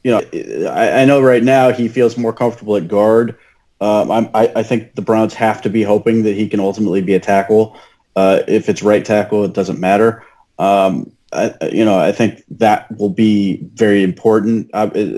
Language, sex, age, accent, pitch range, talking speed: English, male, 30-49, American, 100-115 Hz, 185 wpm